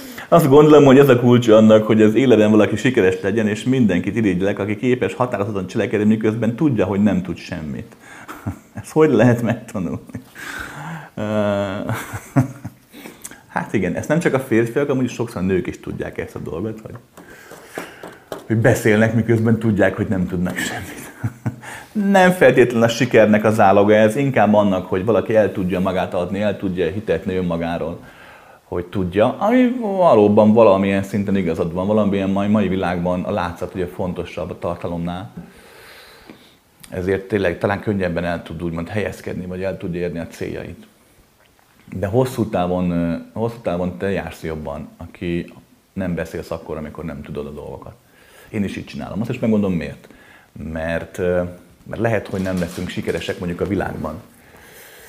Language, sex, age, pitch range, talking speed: Hungarian, male, 30-49, 90-115 Hz, 155 wpm